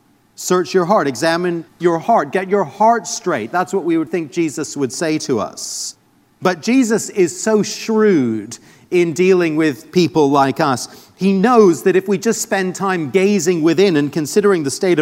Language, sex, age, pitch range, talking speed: English, male, 40-59, 155-200 Hz, 180 wpm